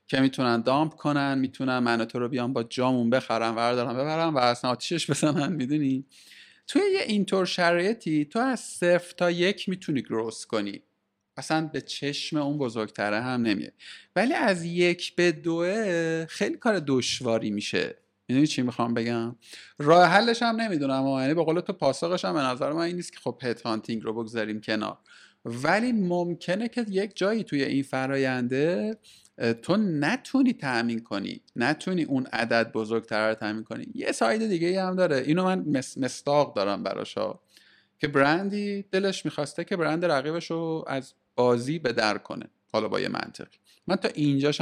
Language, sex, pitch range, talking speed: Persian, male, 125-180 Hz, 160 wpm